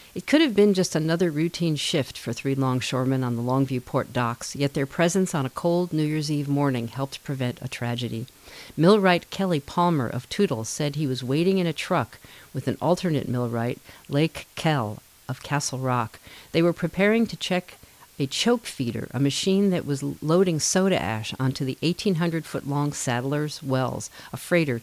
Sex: female